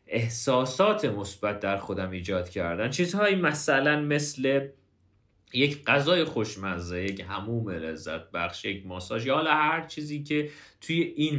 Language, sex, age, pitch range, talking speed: Persian, male, 30-49, 105-160 Hz, 125 wpm